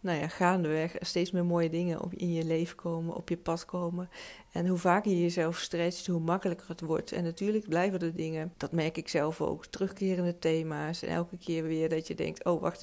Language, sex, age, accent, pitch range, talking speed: Dutch, female, 40-59, Dutch, 165-180 Hz, 215 wpm